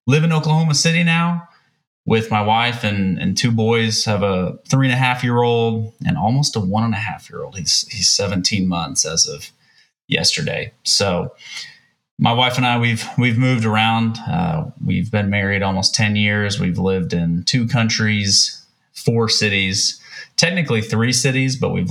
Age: 30-49